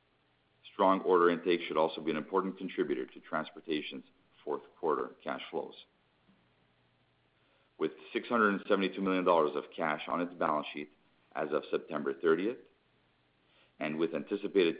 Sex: male